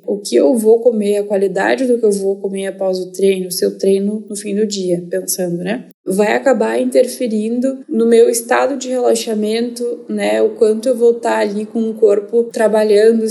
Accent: Brazilian